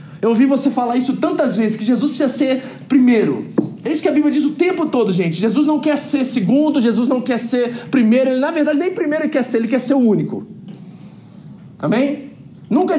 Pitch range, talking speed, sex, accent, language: 200-275 Hz, 215 wpm, male, Brazilian, Portuguese